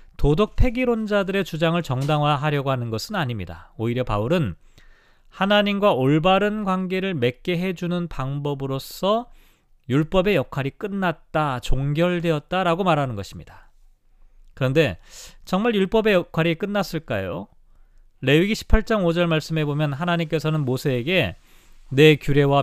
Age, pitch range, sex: 40-59, 140-190 Hz, male